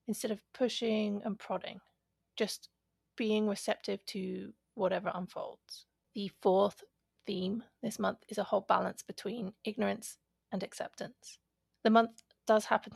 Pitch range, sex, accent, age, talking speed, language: 200-230 Hz, female, British, 30-49, 130 wpm, English